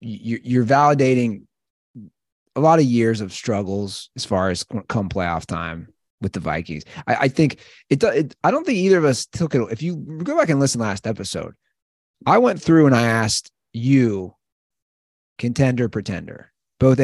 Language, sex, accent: English, male, American